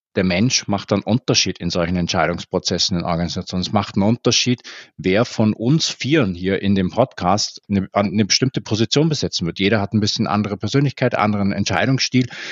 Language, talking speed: German, 175 wpm